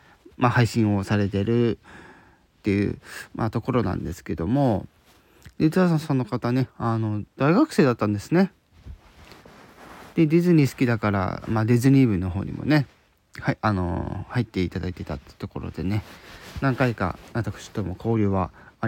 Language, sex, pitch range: Japanese, male, 105-145 Hz